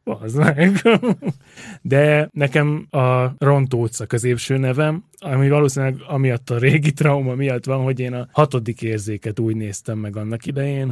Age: 20-39